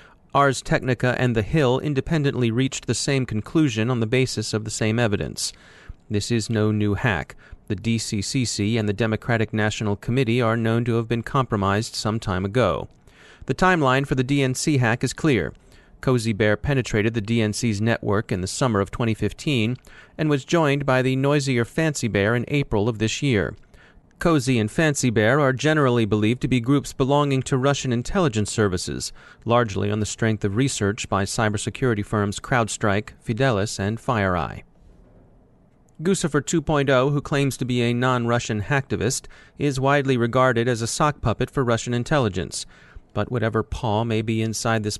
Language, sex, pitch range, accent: English, male, 110-135 Hz, American